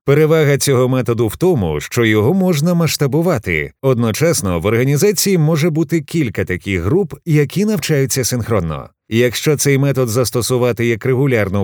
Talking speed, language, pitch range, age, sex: 135 wpm, Ukrainian, 110-165 Hz, 30-49, male